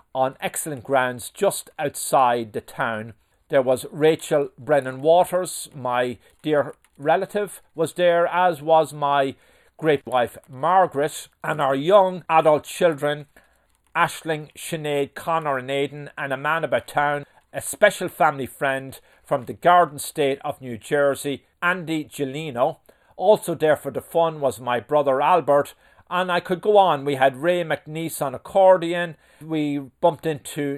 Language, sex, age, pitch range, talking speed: English, male, 50-69, 130-165 Hz, 145 wpm